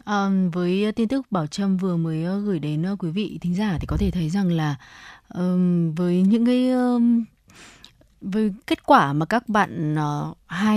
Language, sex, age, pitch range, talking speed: Vietnamese, female, 20-39, 165-210 Hz, 180 wpm